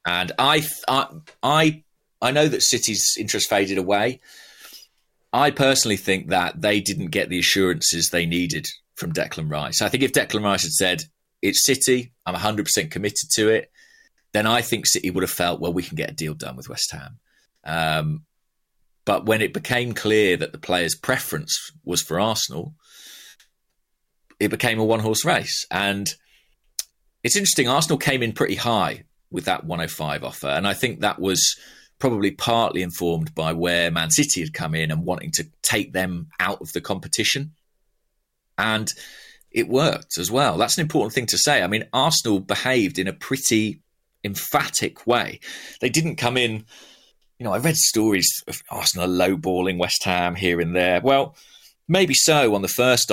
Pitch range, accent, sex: 90-130 Hz, British, male